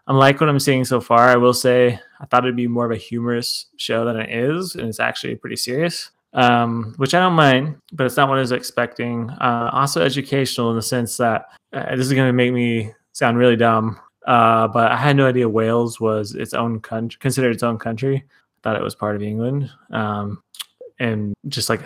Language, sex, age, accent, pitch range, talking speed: English, male, 20-39, American, 115-130 Hz, 220 wpm